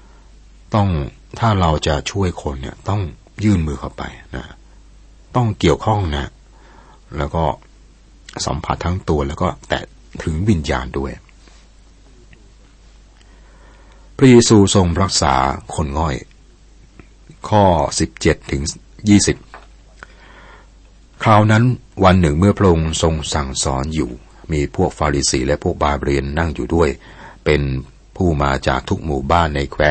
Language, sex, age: Thai, male, 60-79